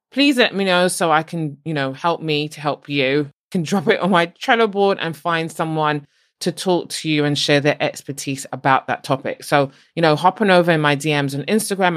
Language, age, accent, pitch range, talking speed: English, 20-39, British, 150-195 Hz, 230 wpm